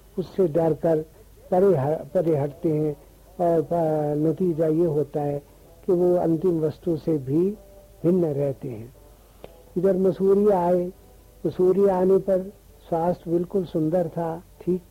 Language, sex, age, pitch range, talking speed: Hindi, male, 60-79, 160-185 Hz, 130 wpm